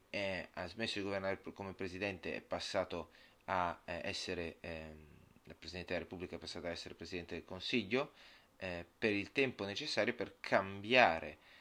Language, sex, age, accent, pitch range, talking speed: Italian, male, 30-49, native, 85-100 Hz, 155 wpm